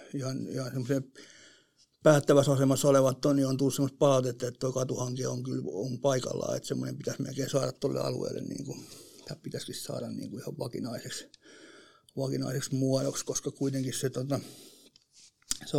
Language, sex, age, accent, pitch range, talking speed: Finnish, male, 60-79, native, 130-145 Hz, 150 wpm